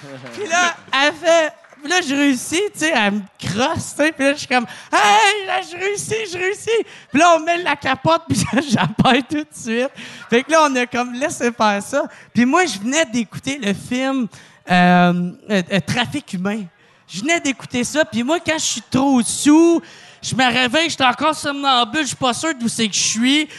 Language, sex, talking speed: French, male, 210 wpm